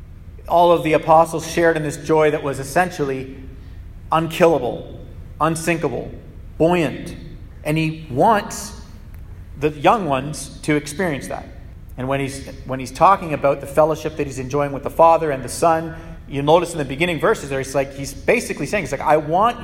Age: 40-59